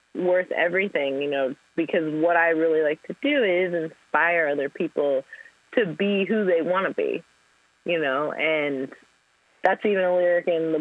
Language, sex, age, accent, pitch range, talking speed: English, female, 20-39, American, 150-195 Hz, 170 wpm